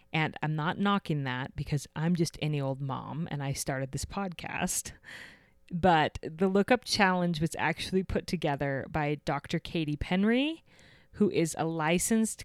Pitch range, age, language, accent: 150-185 Hz, 30-49, English, American